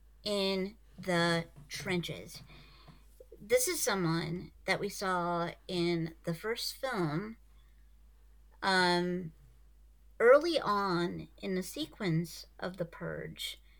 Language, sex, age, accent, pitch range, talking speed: English, female, 40-59, American, 165-210 Hz, 95 wpm